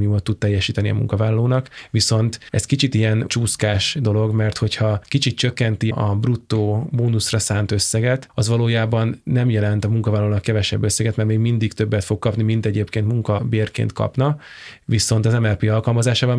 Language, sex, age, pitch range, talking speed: Hungarian, male, 20-39, 110-120 Hz, 160 wpm